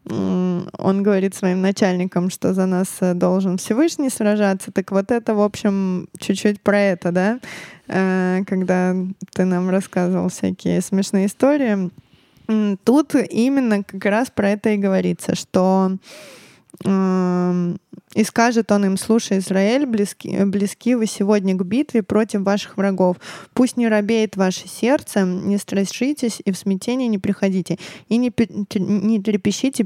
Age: 20-39